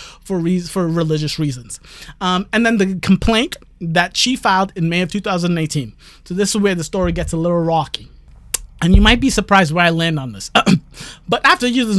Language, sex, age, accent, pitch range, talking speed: English, male, 30-49, American, 175-255 Hz, 200 wpm